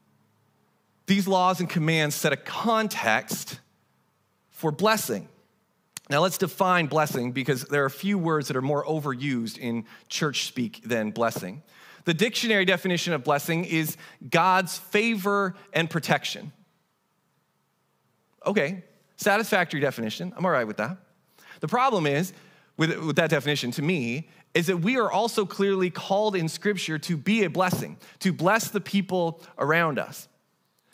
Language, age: English, 30-49